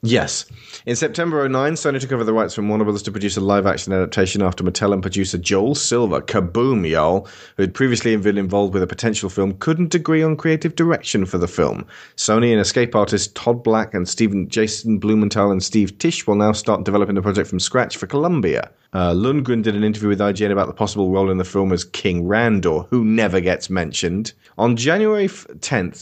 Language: English